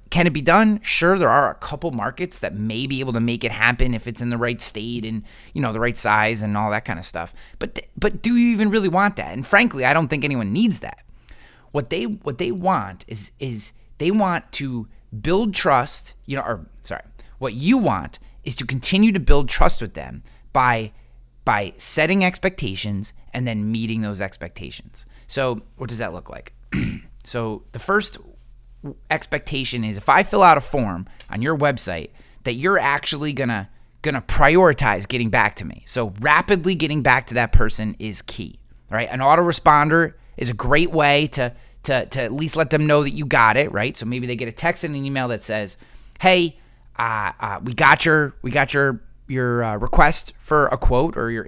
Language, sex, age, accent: English, male, 30-49, American